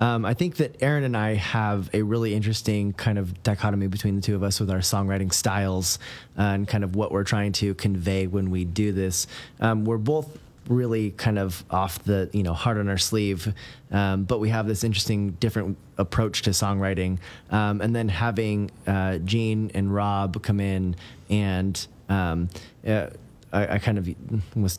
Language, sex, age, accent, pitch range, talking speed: English, male, 30-49, American, 95-115 Hz, 185 wpm